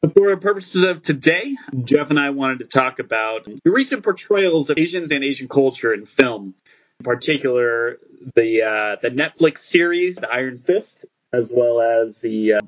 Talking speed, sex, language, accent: 170 wpm, male, English, American